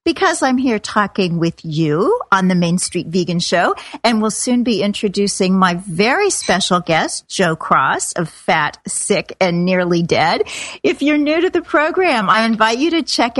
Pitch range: 185-240 Hz